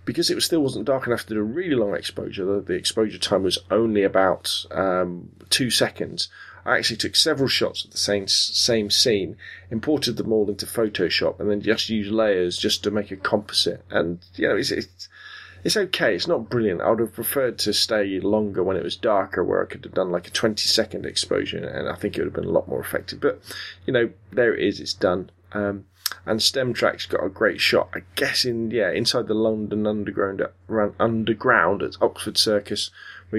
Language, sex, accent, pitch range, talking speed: English, male, British, 100-115 Hz, 210 wpm